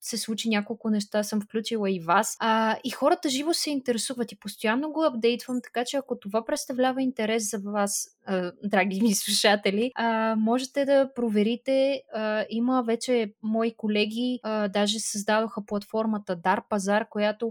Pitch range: 210-250 Hz